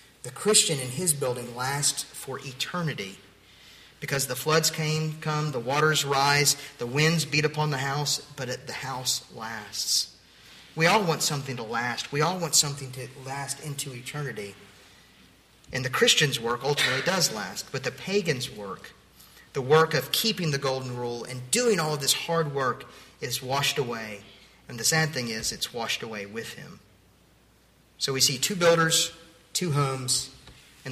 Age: 40-59